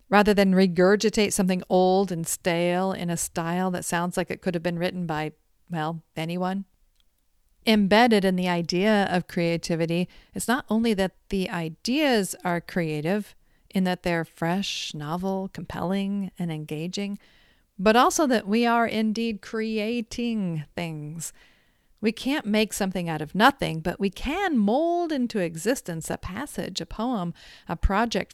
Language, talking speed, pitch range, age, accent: English, 150 wpm, 175-225 Hz, 40-59, American